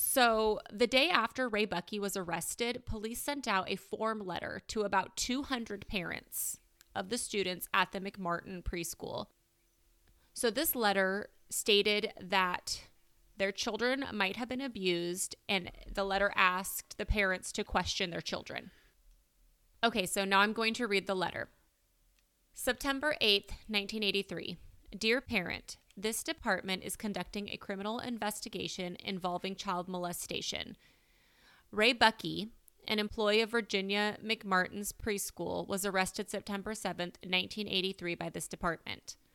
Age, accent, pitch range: 30-49, American, 190-225 Hz